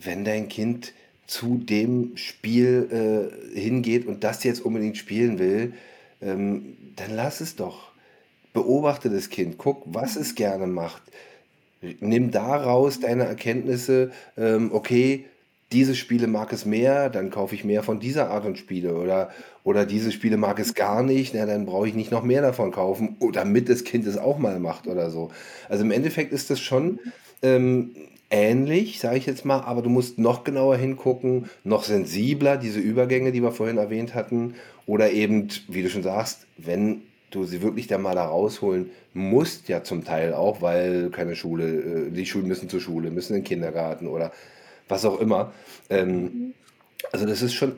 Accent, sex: German, male